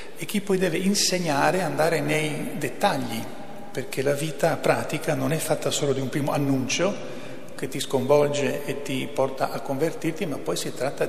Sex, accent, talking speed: male, native, 180 wpm